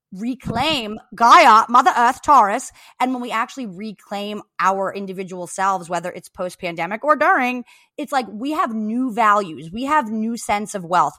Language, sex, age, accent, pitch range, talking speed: English, female, 20-39, American, 180-250 Hz, 160 wpm